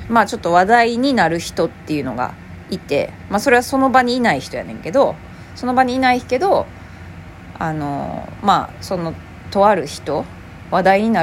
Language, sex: Japanese, female